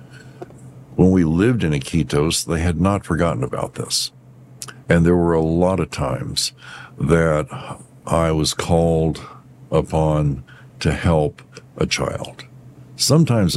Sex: male